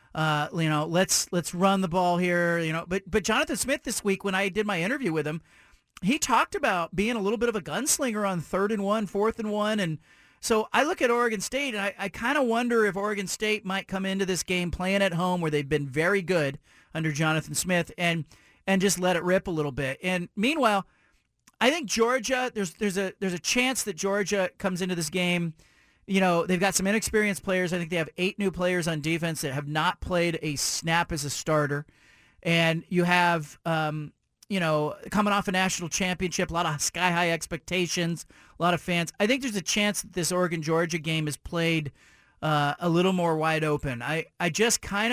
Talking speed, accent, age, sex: 220 wpm, American, 40-59, male